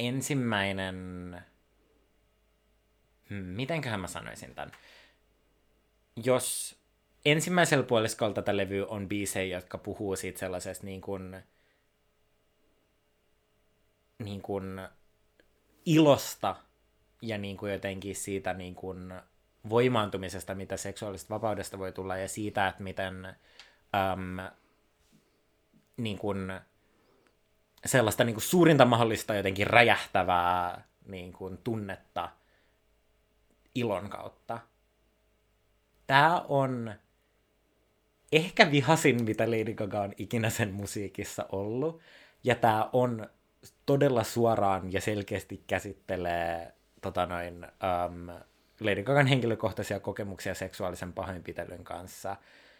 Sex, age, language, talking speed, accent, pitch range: male, 20-39, Finnish, 85 wpm, native, 95-110 Hz